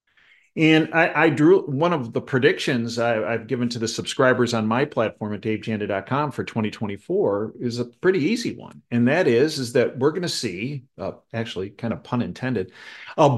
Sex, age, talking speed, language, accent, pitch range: male, 40-59, 180 wpm, English, American, 120-155 Hz